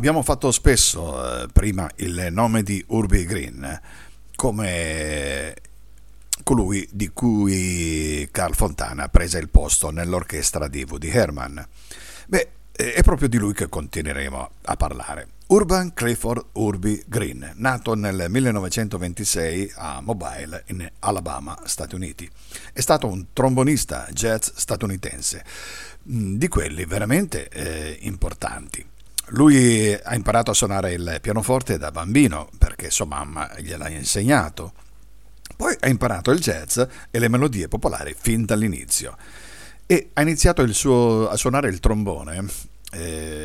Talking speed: 125 wpm